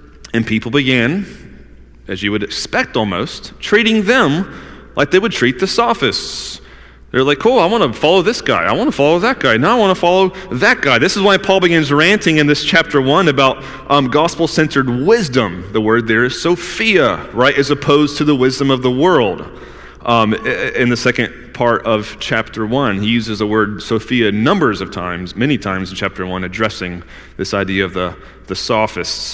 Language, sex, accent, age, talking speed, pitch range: English, male, American, 30-49, 190 wpm, 110-160 Hz